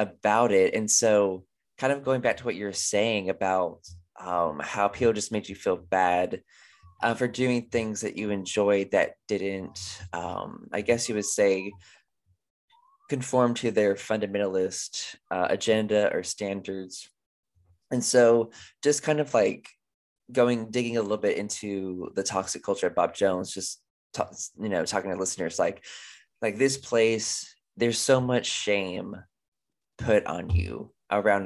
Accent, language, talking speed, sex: American, English, 155 wpm, male